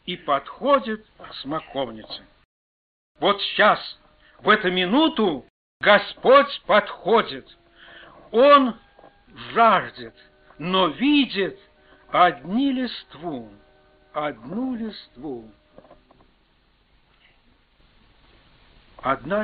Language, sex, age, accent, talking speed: Russian, male, 60-79, native, 60 wpm